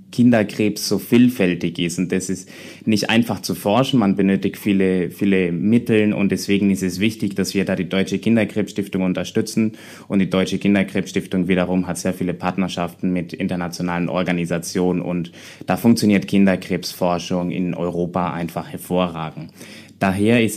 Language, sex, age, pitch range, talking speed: German, male, 20-39, 90-105 Hz, 145 wpm